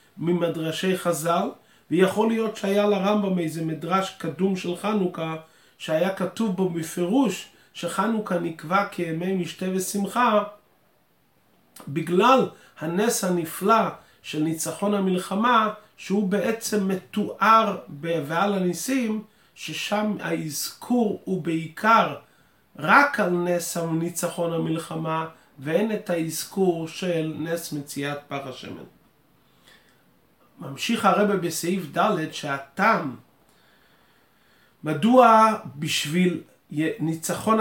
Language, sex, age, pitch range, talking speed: Hebrew, male, 30-49, 160-195 Hz, 90 wpm